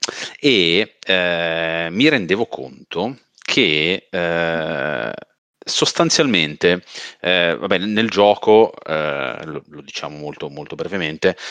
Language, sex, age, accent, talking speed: Italian, male, 40-59, native, 100 wpm